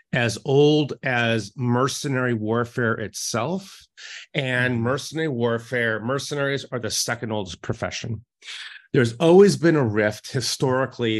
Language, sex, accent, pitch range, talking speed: English, male, American, 110-140 Hz, 115 wpm